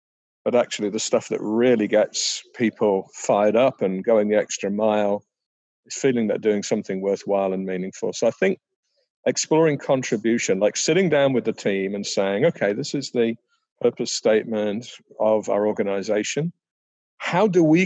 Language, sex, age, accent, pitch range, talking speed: English, male, 50-69, British, 105-140 Hz, 160 wpm